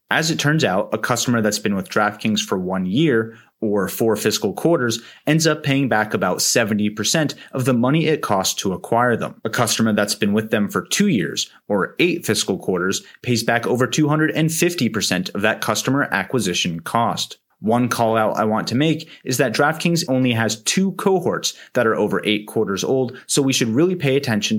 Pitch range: 105-145 Hz